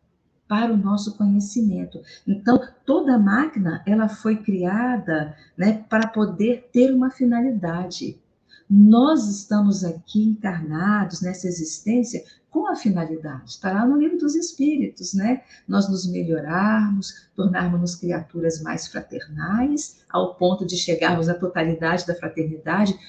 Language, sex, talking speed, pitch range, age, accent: Portuguese, female, 120 wpm, 185-245 Hz, 50-69, Brazilian